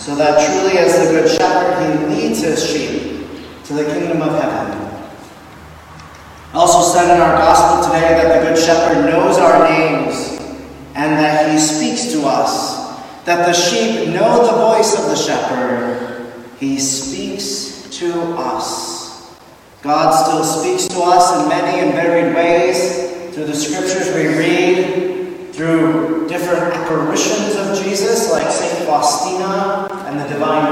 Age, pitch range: 40-59, 150-180 Hz